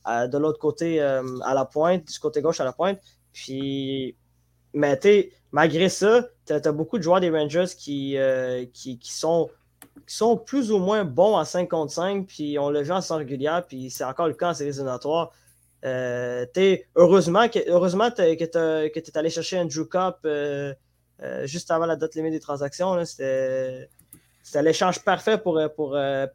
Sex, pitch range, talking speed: male, 140-175 Hz, 190 wpm